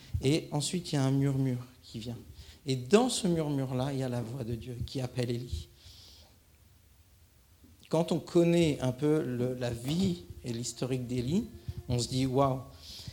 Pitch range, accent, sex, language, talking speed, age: 120-135 Hz, French, male, French, 175 wpm, 50-69